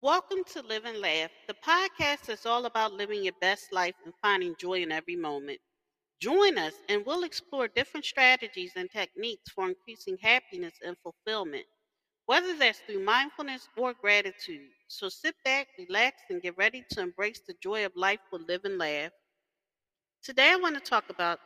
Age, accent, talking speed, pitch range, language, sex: 40-59, American, 175 wpm, 185-295 Hz, English, female